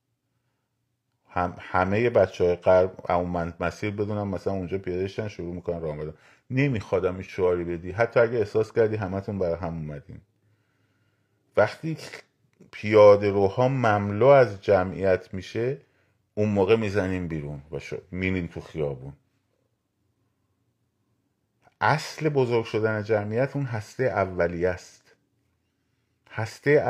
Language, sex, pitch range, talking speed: Persian, male, 95-120 Hz, 105 wpm